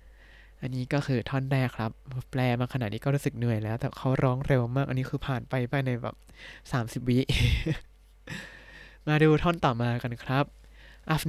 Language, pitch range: Thai, 120-155 Hz